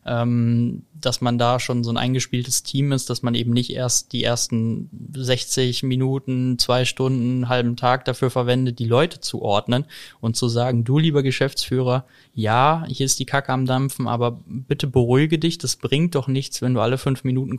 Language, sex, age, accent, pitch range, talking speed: German, male, 20-39, German, 115-130 Hz, 190 wpm